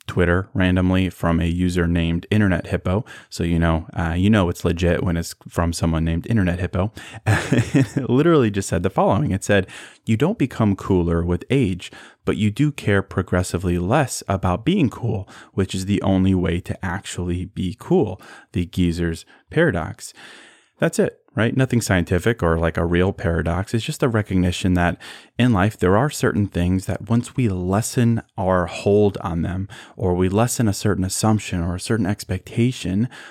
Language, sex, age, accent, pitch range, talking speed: English, male, 30-49, American, 90-110 Hz, 175 wpm